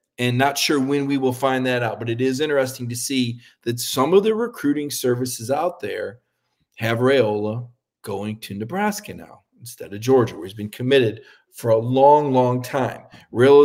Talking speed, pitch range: 185 wpm, 120-160 Hz